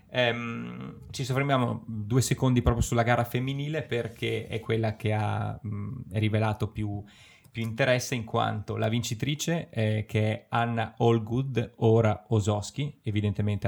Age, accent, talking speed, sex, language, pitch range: 20-39, native, 135 wpm, male, Italian, 110-120 Hz